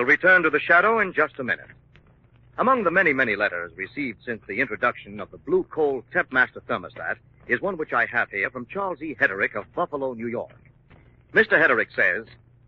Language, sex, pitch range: English, male, 125-210 Hz